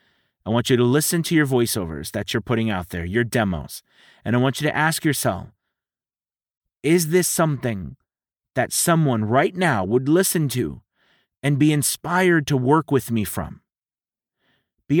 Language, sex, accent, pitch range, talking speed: English, male, American, 125-180 Hz, 165 wpm